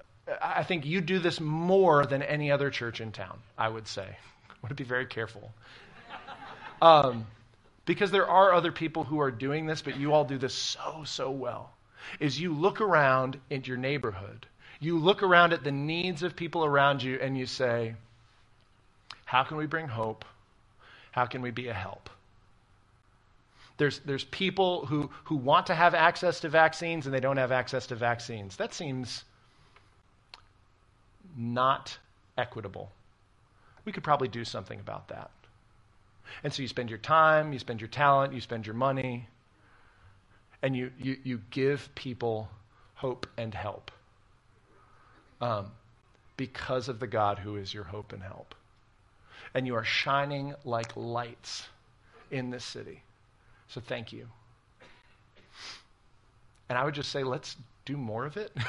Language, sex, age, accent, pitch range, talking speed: English, male, 40-59, American, 110-145 Hz, 155 wpm